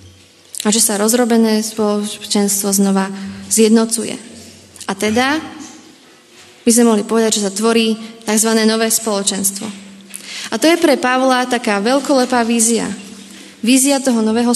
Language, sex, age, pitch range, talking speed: Slovak, female, 20-39, 205-245 Hz, 125 wpm